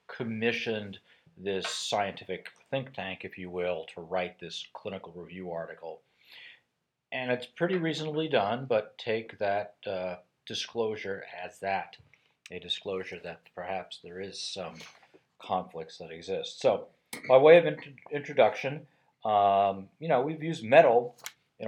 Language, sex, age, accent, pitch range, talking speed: English, male, 40-59, American, 90-125 Hz, 135 wpm